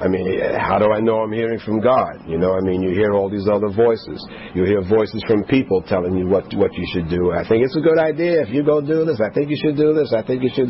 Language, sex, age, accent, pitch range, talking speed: English, male, 50-69, American, 100-115 Hz, 295 wpm